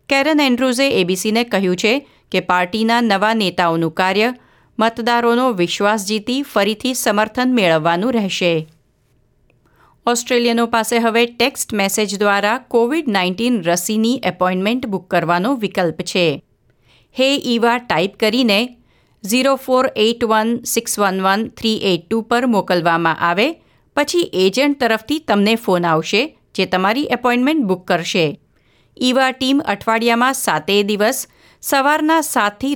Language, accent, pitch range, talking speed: Gujarati, native, 185-245 Hz, 105 wpm